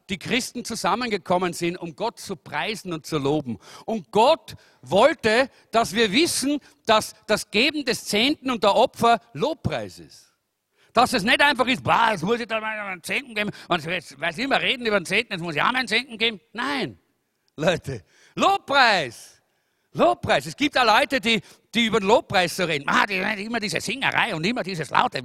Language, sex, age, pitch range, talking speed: German, male, 50-69, 165-250 Hz, 195 wpm